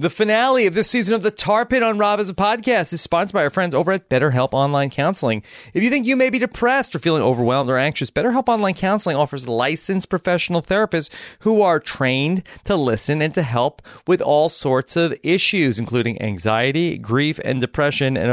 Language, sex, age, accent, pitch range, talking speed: English, male, 30-49, American, 125-180 Hz, 205 wpm